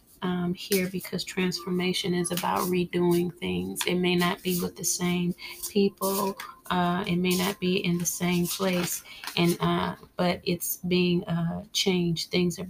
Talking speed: 160 wpm